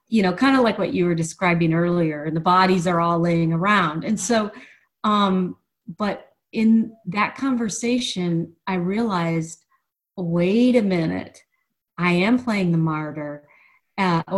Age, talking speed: 40-59, 145 wpm